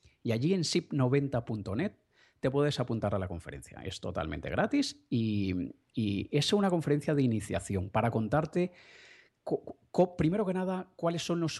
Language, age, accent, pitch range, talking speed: Spanish, 30-49, Spanish, 100-135 Hz, 145 wpm